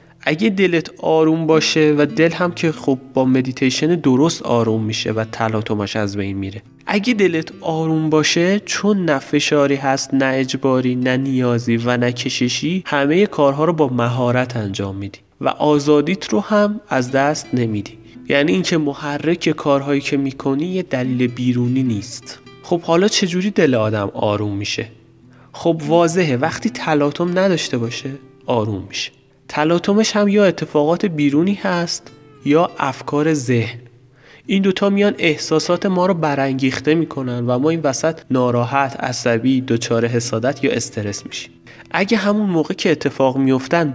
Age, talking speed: 30-49, 145 wpm